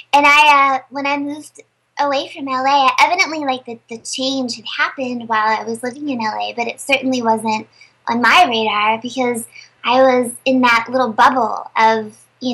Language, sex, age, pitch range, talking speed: English, male, 20-39, 230-320 Hz, 185 wpm